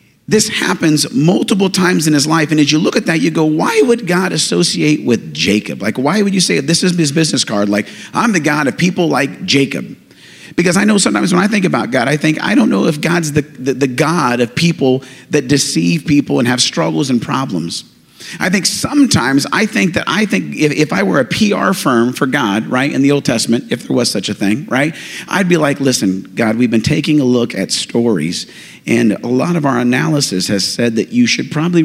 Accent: American